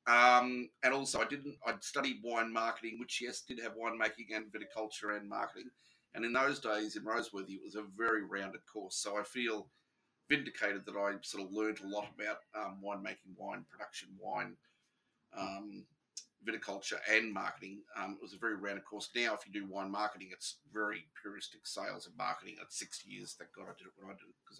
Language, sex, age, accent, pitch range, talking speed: English, male, 30-49, Australian, 100-120 Hz, 205 wpm